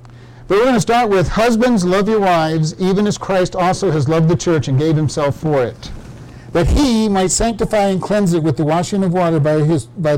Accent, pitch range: American, 130-190 Hz